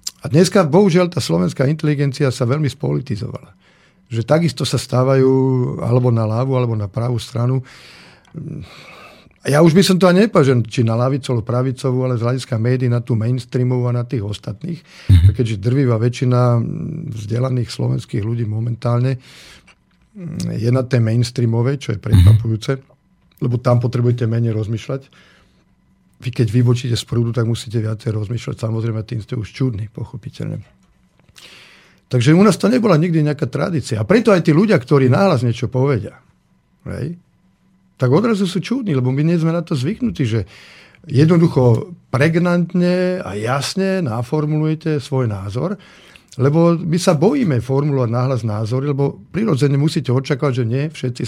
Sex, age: male, 50-69